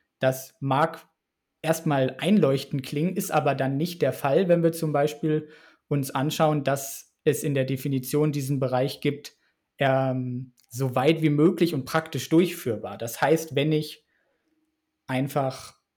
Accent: German